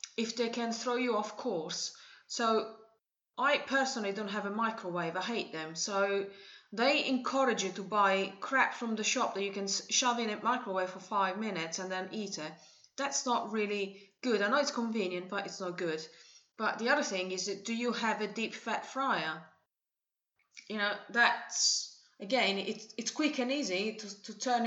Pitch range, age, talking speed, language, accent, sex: 195-240 Hz, 30-49, 190 wpm, English, British, female